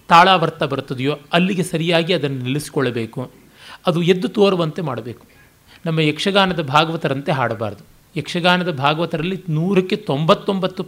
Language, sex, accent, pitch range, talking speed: Kannada, male, native, 155-200 Hz, 105 wpm